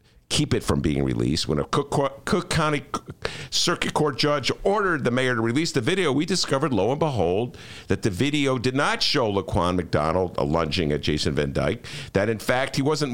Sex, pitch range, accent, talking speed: male, 90-140 Hz, American, 205 wpm